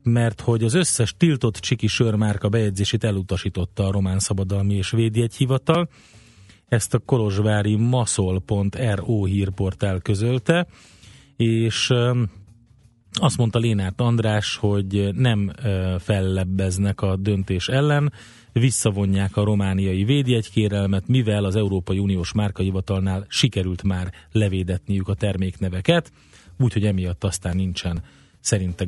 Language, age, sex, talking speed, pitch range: Hungarian, 30-49, male, 105 wpm, 95-120 Hz